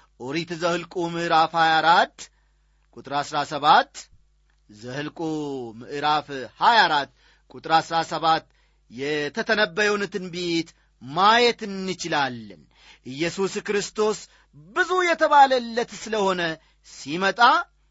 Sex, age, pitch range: male, 40-59, 145-220 Hz